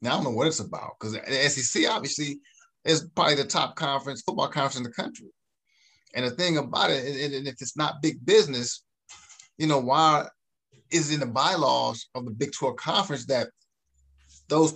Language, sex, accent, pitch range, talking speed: English, male, American, 125-170 Hz, 190 wpm